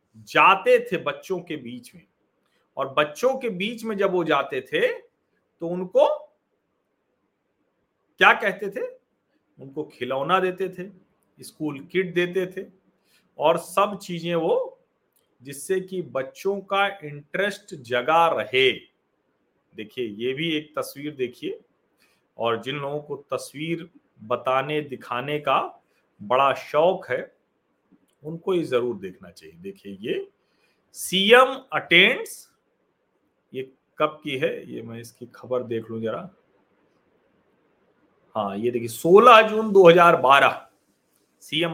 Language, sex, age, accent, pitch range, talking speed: Hindi, male, 40-59, native, 135-200 Hz, 120 wpm